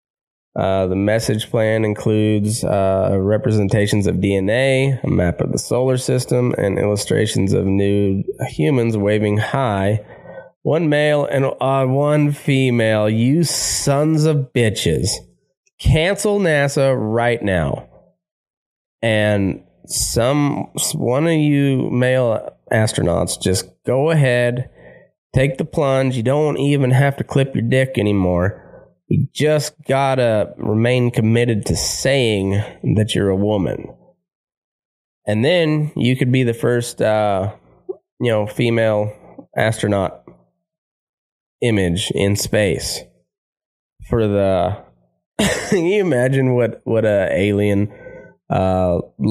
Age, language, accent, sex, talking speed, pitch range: 20-39, English, American, male, 115 wpm, 100-135 Hz